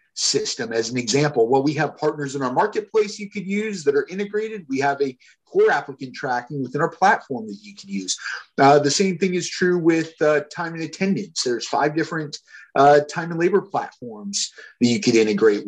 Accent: American